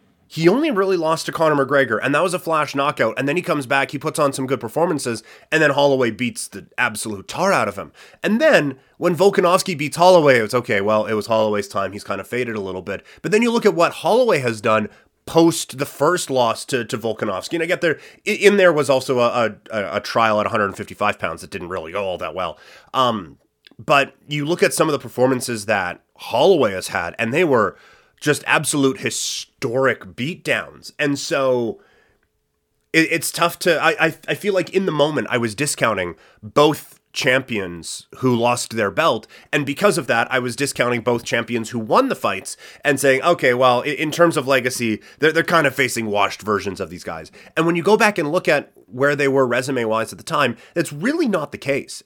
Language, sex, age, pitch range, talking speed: English, male, 30-49, 120-160 Hz, 215 wpm